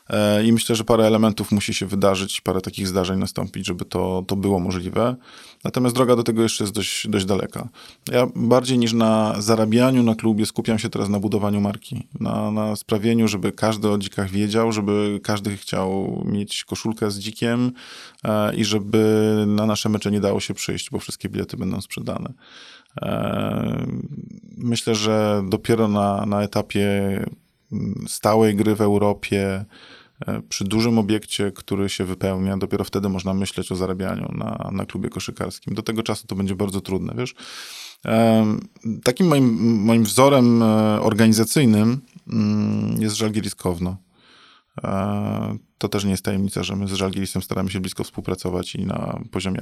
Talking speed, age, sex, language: 150 wpm, 20-39, male, Polish